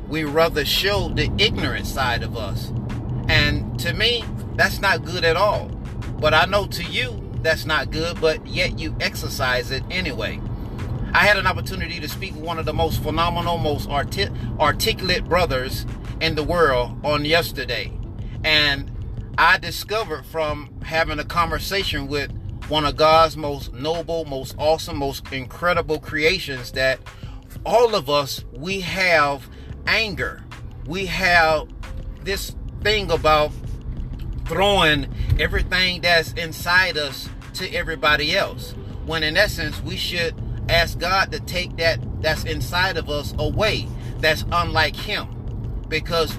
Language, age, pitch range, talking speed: English, 30-49, 115-160 Hz, 140 wpm